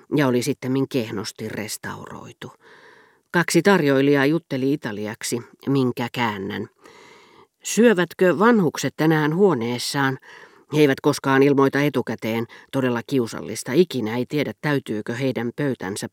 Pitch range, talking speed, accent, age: 125-165 Hz, 105 wpm, native, 40-59